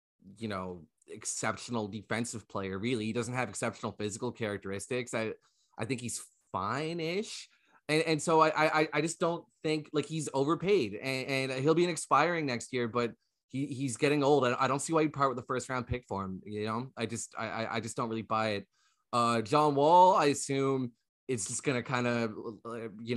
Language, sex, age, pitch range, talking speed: English, male, 20-39, 105-135 Hz, 205 wpm